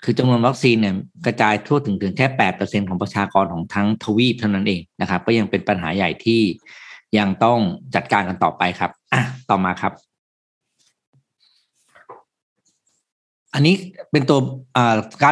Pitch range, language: 100-130 Hz, Thai